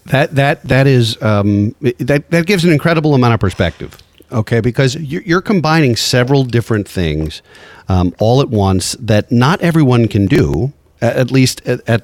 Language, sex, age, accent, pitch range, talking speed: English, male, 40-59, American, 100-135 Hz, 165 wpm